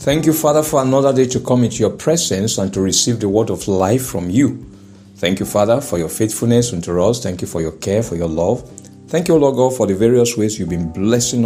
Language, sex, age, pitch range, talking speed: English, male, 60-79, 95-120 Hz, 245 wpm